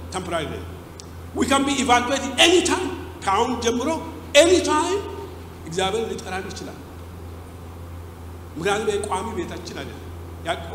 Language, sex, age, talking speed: English, male, 60-79, 140 wpm